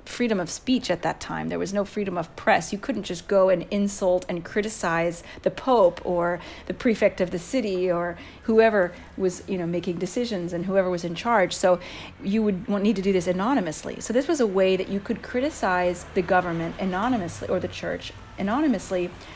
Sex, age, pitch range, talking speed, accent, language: female, 40-59, 175-220 Hz, 200 wpm, American, English